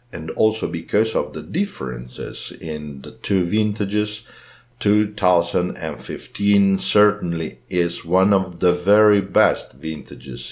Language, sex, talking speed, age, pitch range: English, male, 110 wpm, 50-69, 85-105 Hz